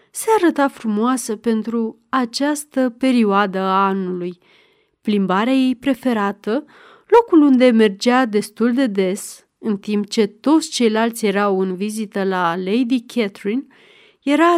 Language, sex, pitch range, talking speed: Romanian, female, 210-275 Hz, 120 wpm